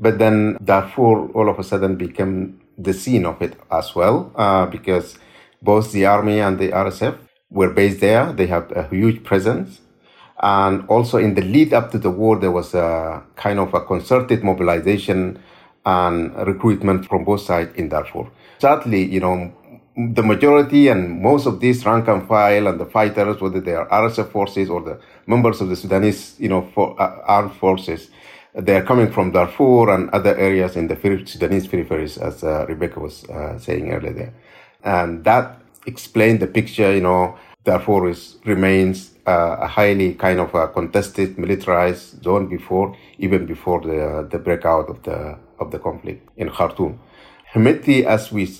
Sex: male